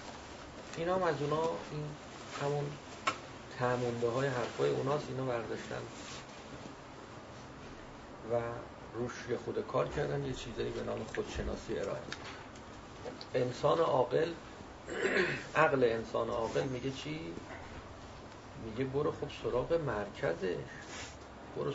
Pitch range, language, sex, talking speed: 115-150 Hz, Persian, male, 100 wpm